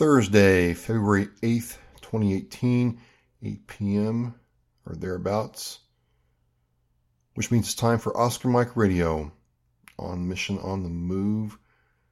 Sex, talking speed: male, 105 wpm